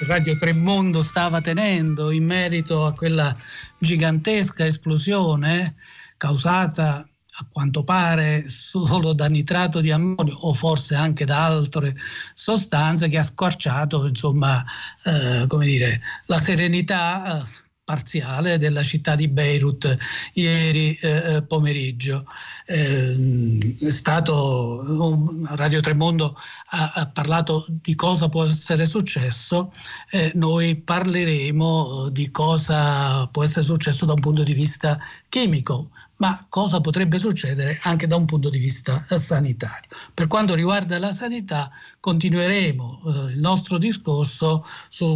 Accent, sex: native, male